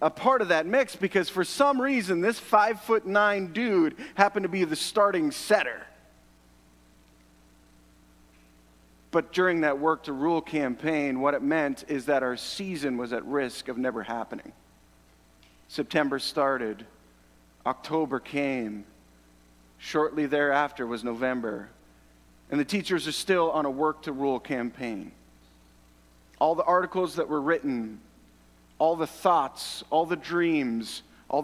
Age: 40-59